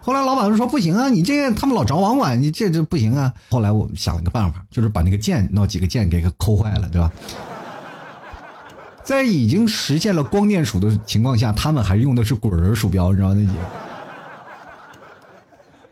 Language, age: Chinese, 50-69